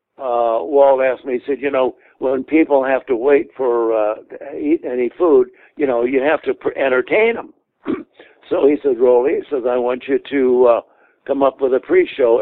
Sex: male